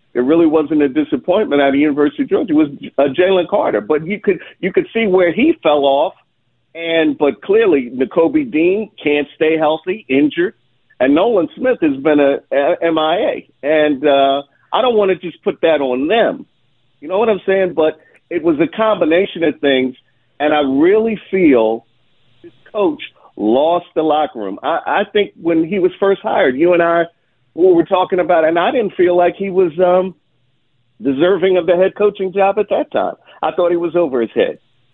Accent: American